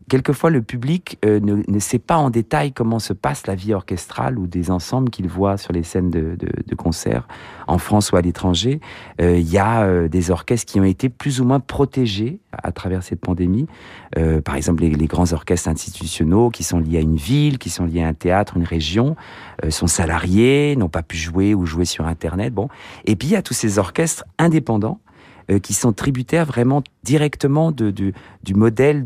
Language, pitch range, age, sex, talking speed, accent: French, 90-125 Hz, 40-59, male, 215 wpm, French